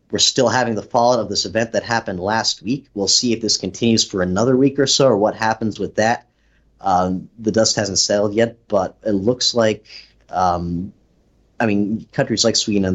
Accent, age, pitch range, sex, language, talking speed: American, 30-49, 95-115 Hz, male, English, 205 wpm